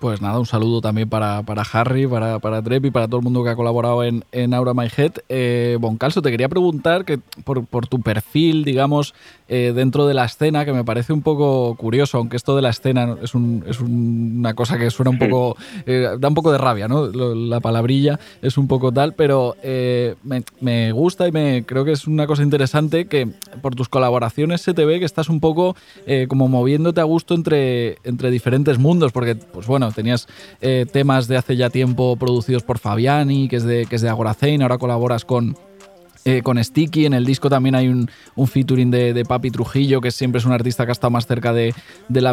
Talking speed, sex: 225 wpm, male